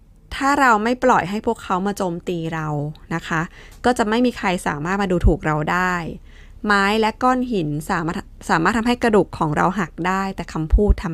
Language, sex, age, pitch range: Thai, female, 20-39, 165-220 Hz